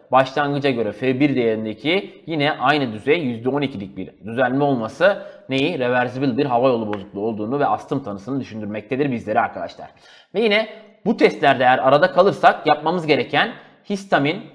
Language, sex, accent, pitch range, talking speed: Turkish, male, native, 115-160 Hz, 140 wpm